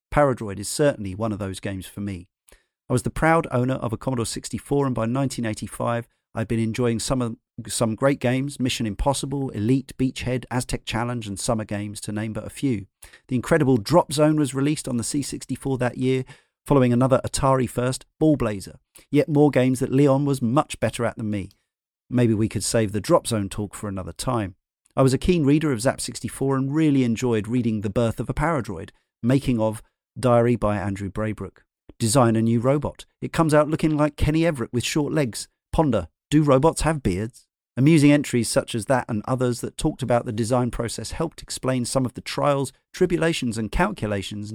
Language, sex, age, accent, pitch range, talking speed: English, male, 40-59, British, 110-140 Hz, 195 wpm